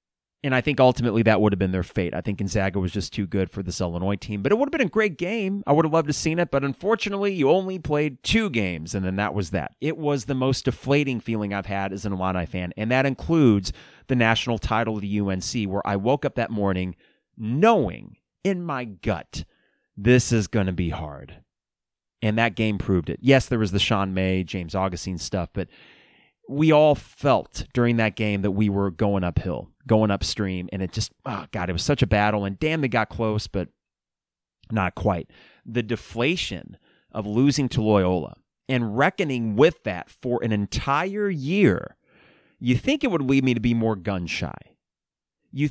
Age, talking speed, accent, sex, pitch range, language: 30-49, 205 wpm, American, male, 100-140 Hz, English